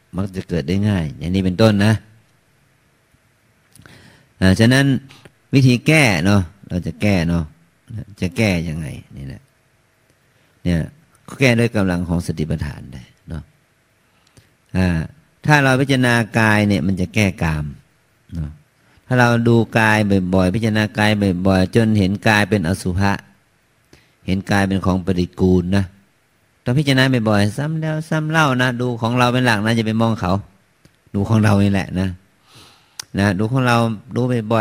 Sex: male